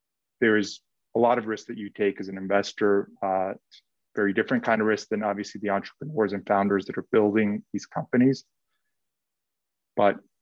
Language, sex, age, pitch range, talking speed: English, male, 30-49, 100-110 Hz, 165 wpm